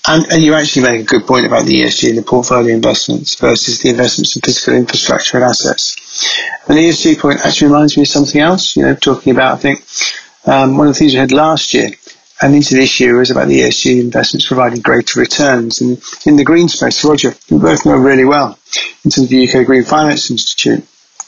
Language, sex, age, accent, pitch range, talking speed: English, male, 40-59, British, 125-150 Hz, 225 wpm